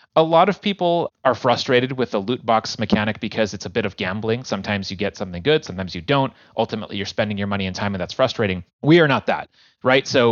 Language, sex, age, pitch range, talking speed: English, male, 30-49, 95-125 Hz, 240 wpm